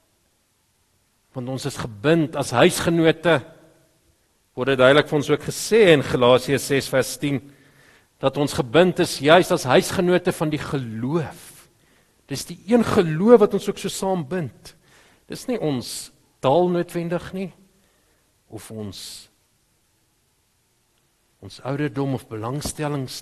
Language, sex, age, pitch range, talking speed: English, male, 50-69, 125-175 Hz, 130 wpm